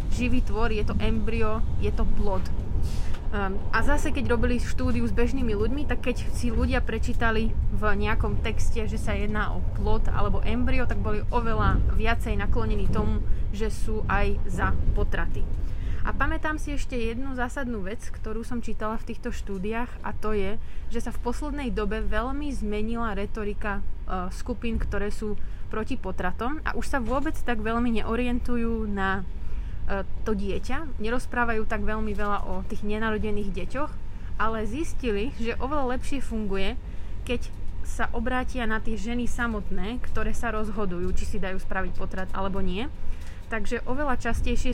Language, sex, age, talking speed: Slovak, female, 20-39, 155 wpm